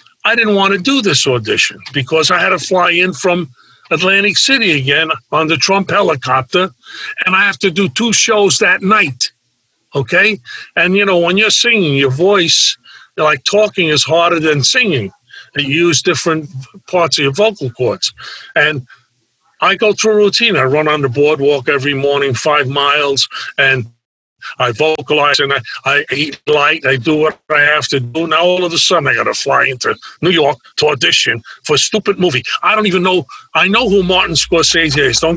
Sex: male